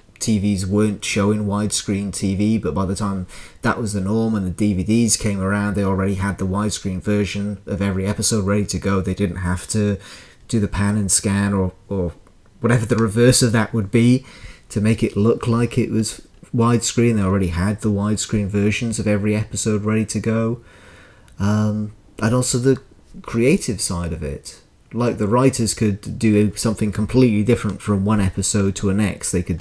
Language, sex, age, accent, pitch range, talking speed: English, male, 30-49, British, 100-115 Hz, 190 wpm